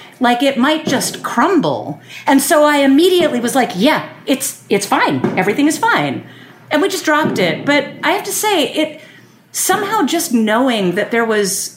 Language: English